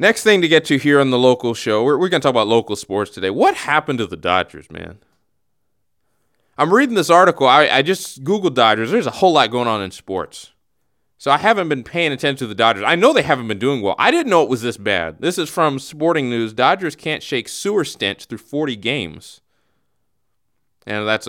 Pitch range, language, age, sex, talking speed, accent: 110-160 Hz, English, 30-49, male, 225 wpm, American